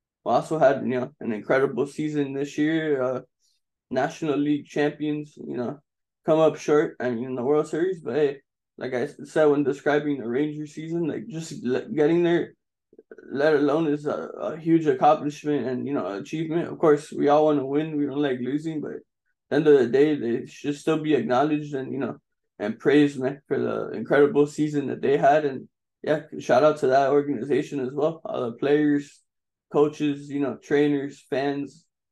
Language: English